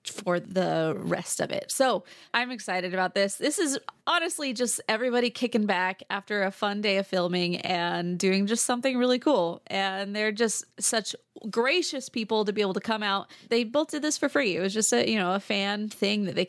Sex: female